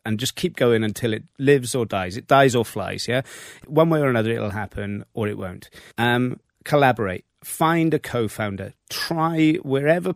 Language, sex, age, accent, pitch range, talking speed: English, male, 30-49, British, 110-140 Hz, 175 wpm